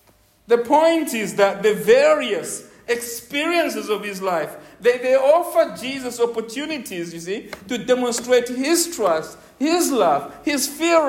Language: English